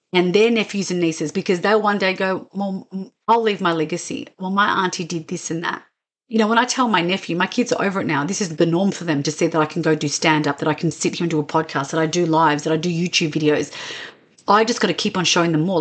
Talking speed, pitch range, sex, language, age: 290 wpm, 165-210 Hz, female, English, 40-59